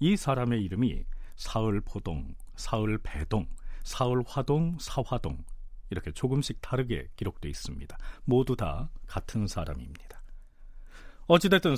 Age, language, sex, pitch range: 40-59, Korean, male, 100-155 Hz